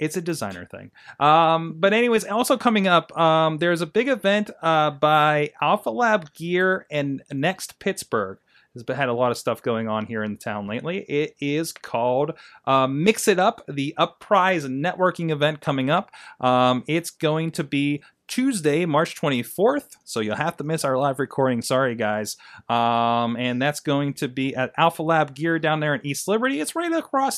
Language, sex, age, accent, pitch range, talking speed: English, male, 30-49, American, 120-175 Hz, 185 wpm